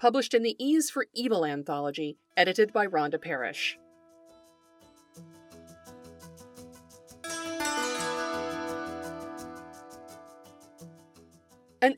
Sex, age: female, 40-59